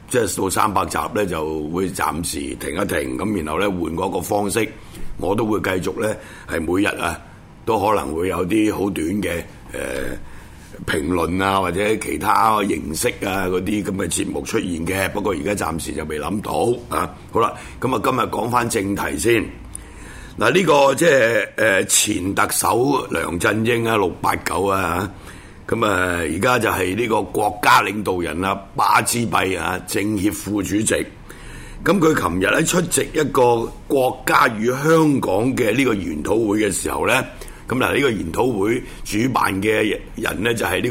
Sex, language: male, Chinese